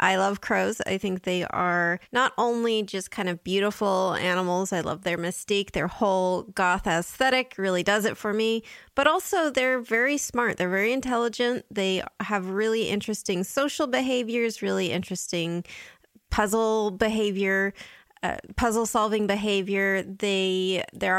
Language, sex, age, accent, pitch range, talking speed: English, female, 20-39, American, 180-220 Hz, 145 wpm